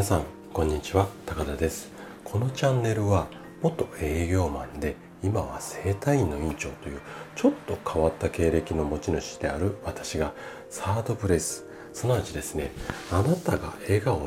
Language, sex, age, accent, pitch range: Japanese, male, 40-59, native, 80-120 Hz